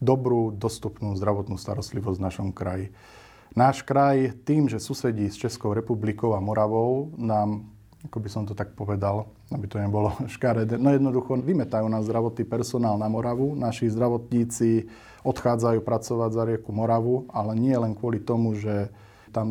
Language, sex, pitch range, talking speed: Slovak, male, 105-120 Hz, 155 wpm